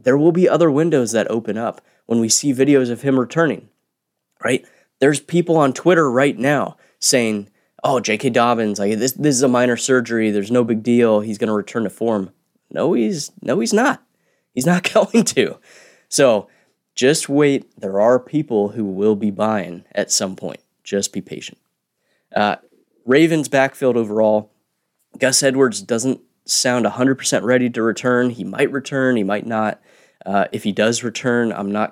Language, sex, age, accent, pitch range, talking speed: English, male, 20-39, American, 105-135 Hz, 175 wpm